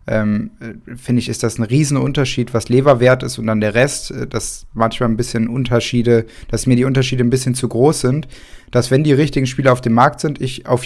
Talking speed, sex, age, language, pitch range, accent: 220 wpm, male, 20-39, German, 115-125 Hz, German